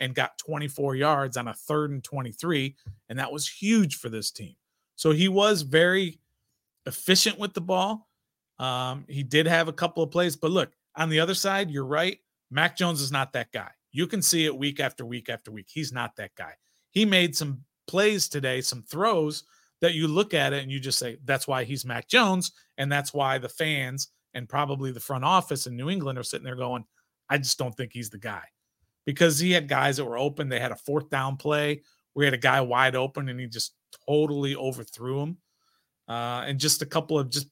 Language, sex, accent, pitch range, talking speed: English, male, American, 130-170 Hz, 220 wpm